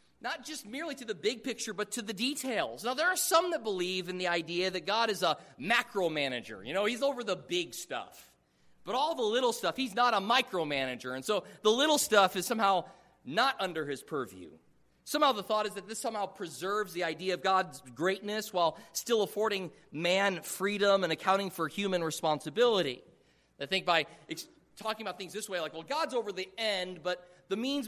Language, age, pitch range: English, 30-49, 175-230 Hz